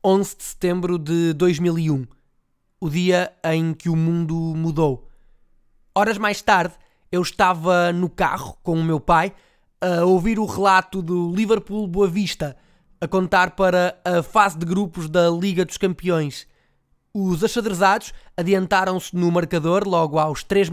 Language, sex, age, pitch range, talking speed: Portuguese, male, 20-39, 170-200 Hz, 145 wpm